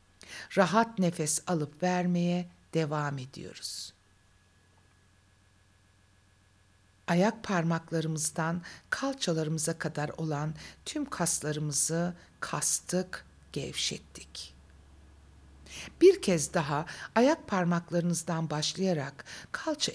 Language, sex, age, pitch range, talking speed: Turkish, female, 60-79, 145-200 Hz, 65 wpm